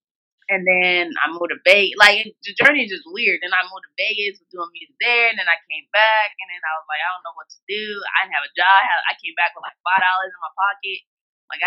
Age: 20-39